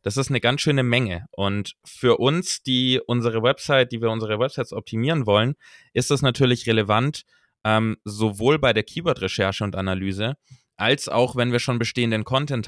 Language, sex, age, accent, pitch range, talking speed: German, male, 20-39, German, 105-130 Hz, 170 wpm